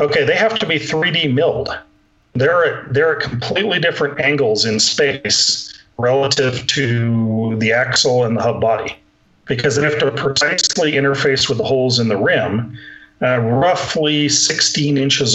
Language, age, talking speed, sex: English, 40-59, 155 wpm, male